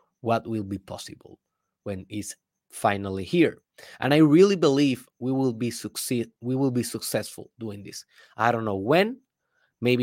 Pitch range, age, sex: 115-145 Hz, 20-39, male